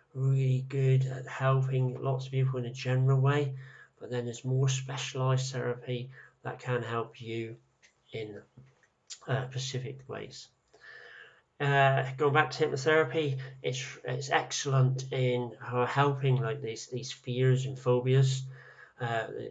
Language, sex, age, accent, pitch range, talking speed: English, male, 40-59, British, 120-135 Hz, 130 wpm